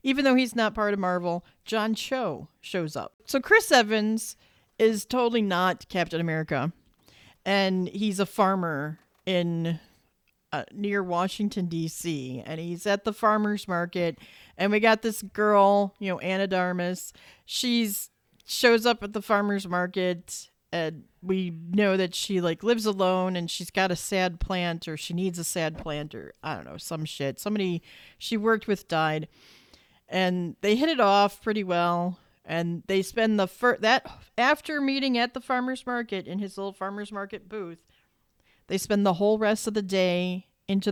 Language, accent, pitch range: English, American, 170-210 Hz